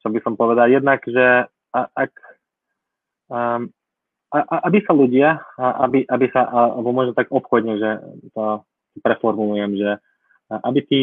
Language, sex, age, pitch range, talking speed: Slovak, male, 20-39, 115-125 Hz, 160 wpm